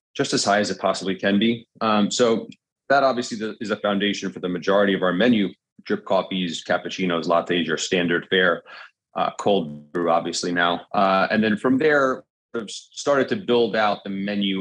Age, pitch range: 30-49, 95-115 Hz